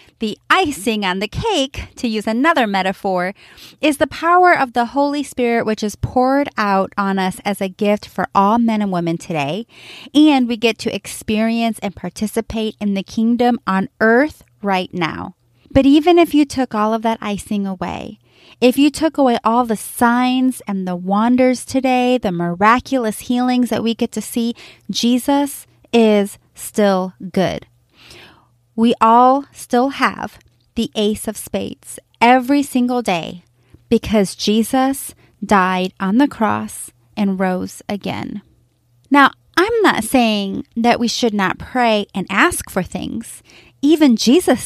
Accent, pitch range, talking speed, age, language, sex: American, 195-250 Hz, 150 wpm, 30-49, English, female